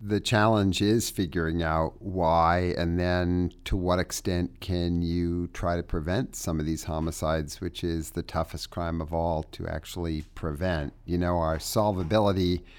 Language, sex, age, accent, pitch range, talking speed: English, male, 50-69, American, 80-95 Hz, 160 wpm